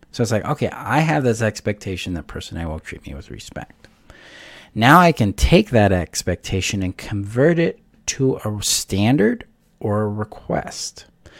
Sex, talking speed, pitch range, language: male, 165 wpm, 90-120 Hz, English